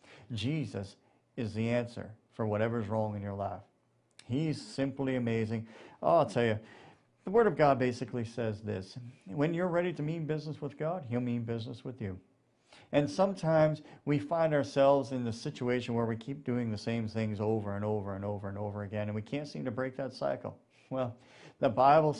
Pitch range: 110-145 Hz